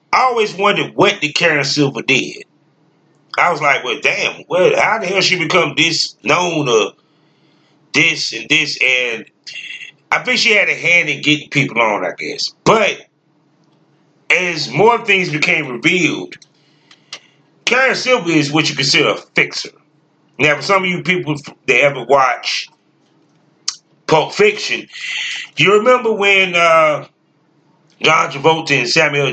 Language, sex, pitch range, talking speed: English, male, 150-185 Hz, 145 wpm